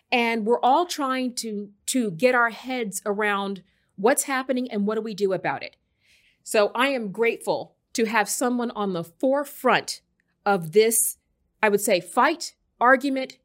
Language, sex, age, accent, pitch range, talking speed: English, female, 30-49, American, 205-265 Hz, 160 wpm